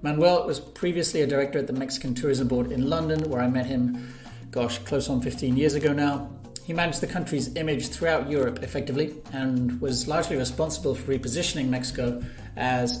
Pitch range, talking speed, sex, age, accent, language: 125-155 Hz, 180 wpm, male, 40-59, British, English